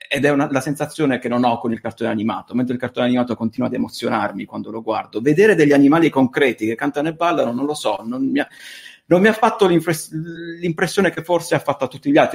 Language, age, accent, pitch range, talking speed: Italian, 30-49, native, 120-160 Hz, 245 wpm